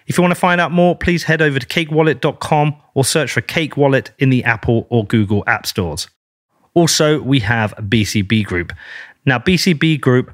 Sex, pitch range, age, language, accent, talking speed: male, 115-145 Hz, 30-49, English, British, 185 wpm